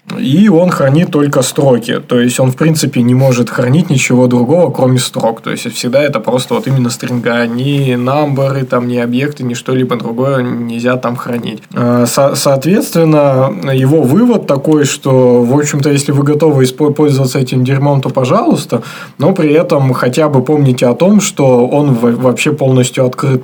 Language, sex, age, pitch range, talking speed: Russian, male, 20-39, 125-150 Hz, 165 wpm